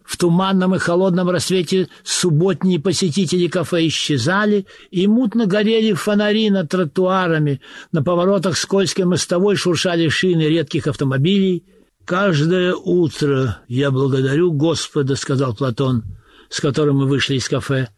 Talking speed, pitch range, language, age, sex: 120 wpm, 145-190 Hz, Russian, 60-79, male